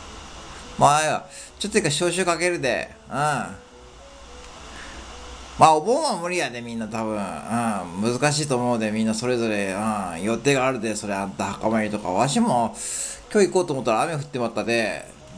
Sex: male